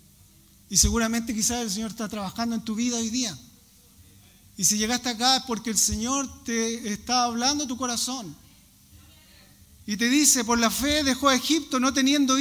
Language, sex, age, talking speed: Spanish, male, 40-59, 180 wpm